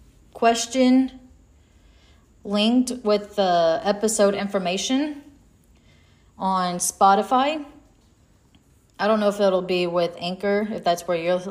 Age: 20-39